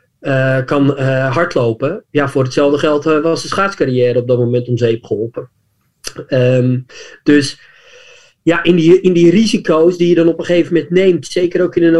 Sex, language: male, Dutch